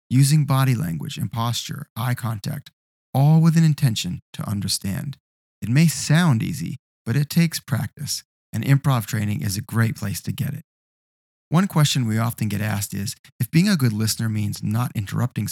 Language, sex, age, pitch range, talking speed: English, male, 30-49, 110-150 Hz, 180 wpm